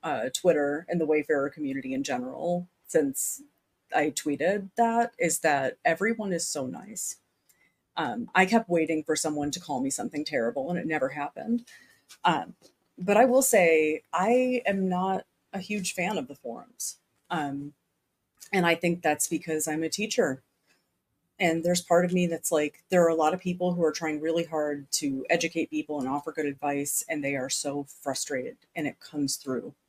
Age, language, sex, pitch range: 30-49, English, female, 155-210 Hz